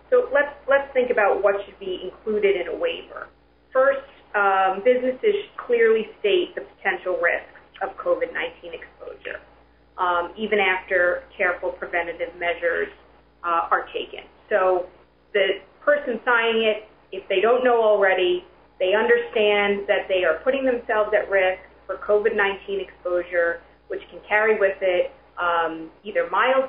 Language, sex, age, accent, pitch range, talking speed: English, female, 30-49, American, 185-280 Hz, 140 wpm